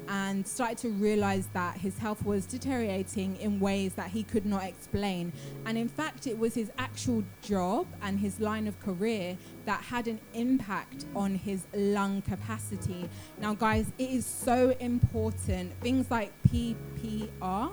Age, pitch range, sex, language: 20-39, 180-225 Hz, female, English